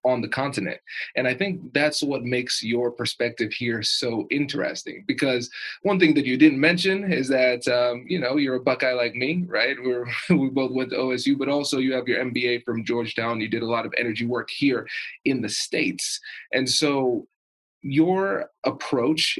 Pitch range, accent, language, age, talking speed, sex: 115-140 Hz, American, English, 20-39, 180 wpm, male